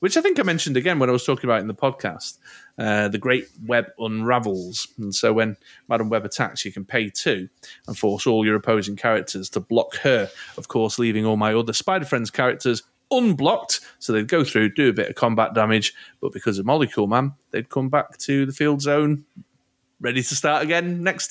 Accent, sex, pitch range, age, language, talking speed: British, male, 105-135 Hz, 30-49, English, 210 wpm